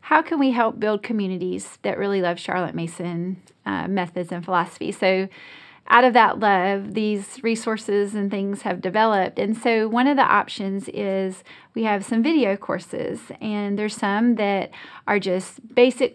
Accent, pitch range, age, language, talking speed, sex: American, 200-245 Hz, 30-49, English, 165 wpm, female